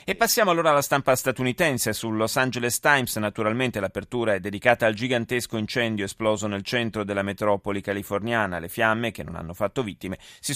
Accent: native